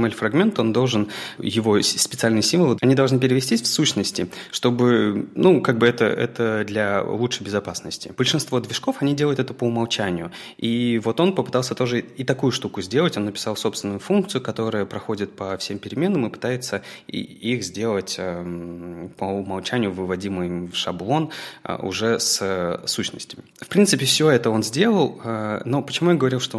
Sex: male